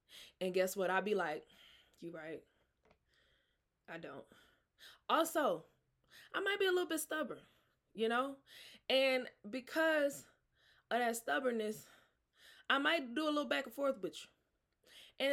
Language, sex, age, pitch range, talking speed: English, female, 20-39, 195-290 Hz, 145 wpm